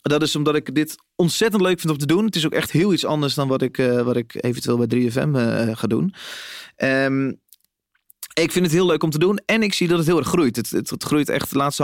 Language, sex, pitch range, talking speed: Dutch, male, 125-165 Hz, 275 wpm